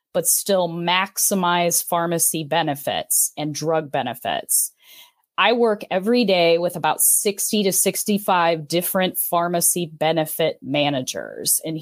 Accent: American